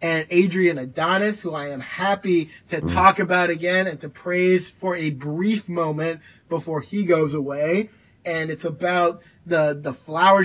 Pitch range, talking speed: 160-190 Hz, 160 wpm